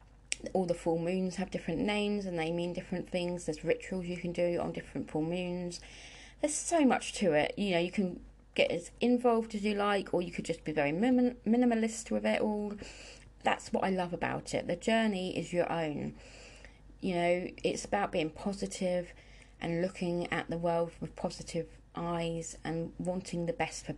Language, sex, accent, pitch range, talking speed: English, female, British, 160-205 Hz, 190 wpm